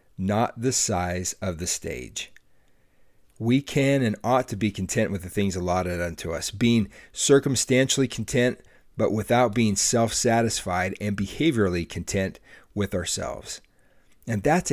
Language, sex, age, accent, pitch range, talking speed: English, male, 40-59, American, 95-120 Hz, 135 wpm